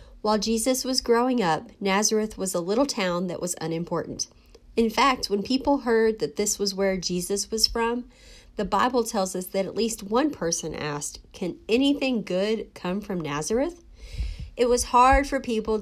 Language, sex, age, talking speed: English, female, 30-49, 175 wpm